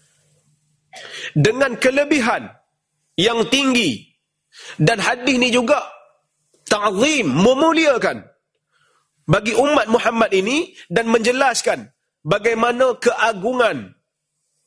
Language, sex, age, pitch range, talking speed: Malay, male, 40-59, 150-225 Hz, 75 wpm